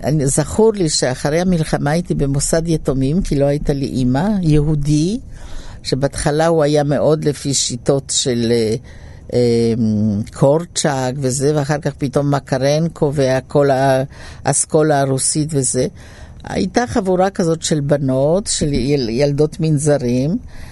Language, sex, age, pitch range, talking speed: Hebrew, female, 60-79, 135-185 Hz, 110 wpm